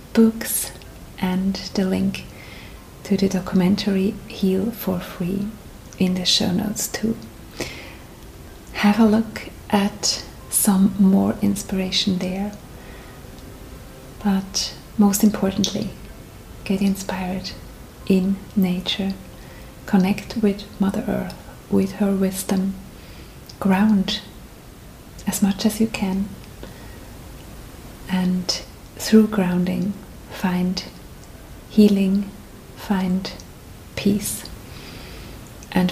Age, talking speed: 30-49, 85 wpm